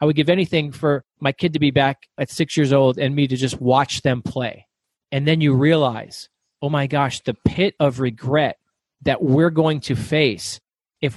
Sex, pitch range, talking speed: male, 130-160 Hz, 205 wpm